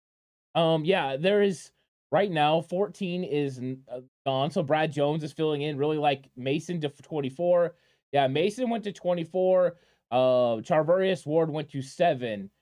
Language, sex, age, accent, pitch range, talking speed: English, male, 20-39, American, 130-170 Hz, 150 wpm